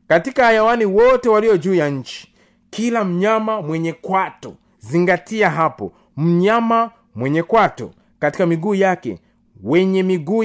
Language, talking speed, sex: Swahili, 120 wpm, male